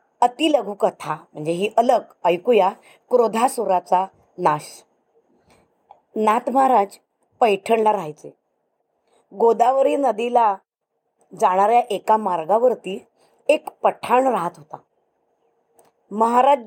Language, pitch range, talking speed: Marathi, 195-270 Hz, 80 wpm